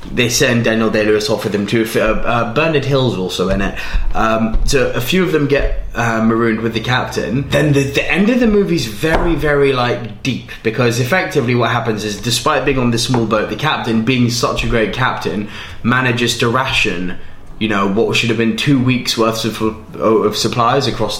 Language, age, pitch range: English, 20-39, 105-125 Hz